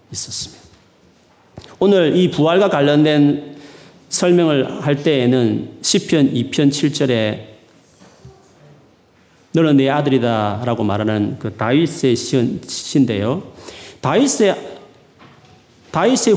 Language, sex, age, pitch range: Korean, male, 40-59, 115-170 Hz